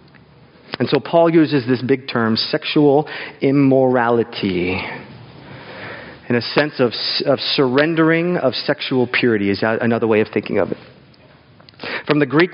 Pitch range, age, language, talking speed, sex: 115-155 Hz, 40-59, English, 135 wpm, male